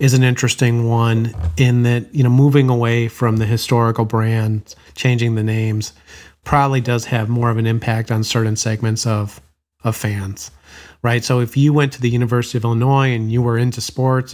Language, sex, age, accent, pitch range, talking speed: English, male, 40-59, American, 110-130 Hz, 190 wpm